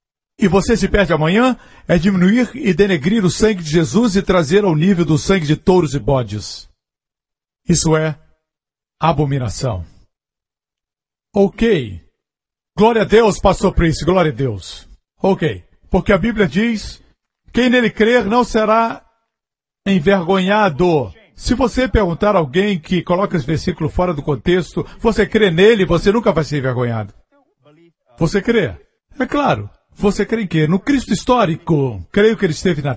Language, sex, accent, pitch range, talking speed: Portuguese, male, Brazilian, 155-210 Hz, 150 wpm